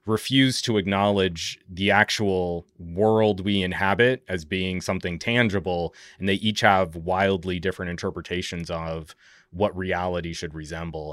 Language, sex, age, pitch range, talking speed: English, male, 30-49, 90-105 Hz, 130 wpm